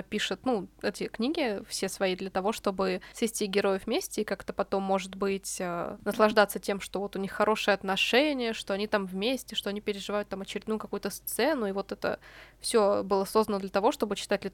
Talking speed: 190 wpm